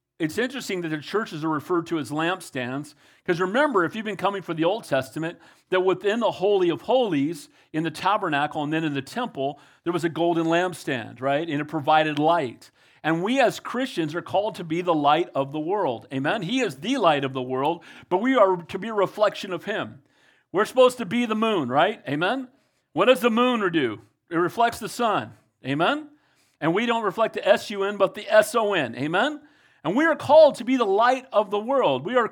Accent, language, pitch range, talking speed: American, English, 150-230 Hz, 215 wpm